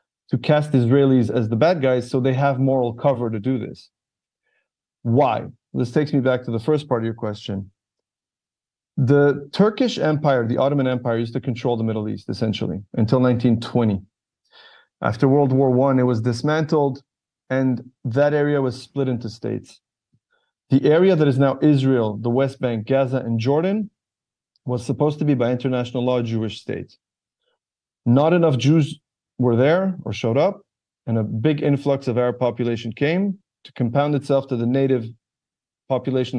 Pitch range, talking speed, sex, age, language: 120-140 Hz, 165 wpm, male, 30-49, English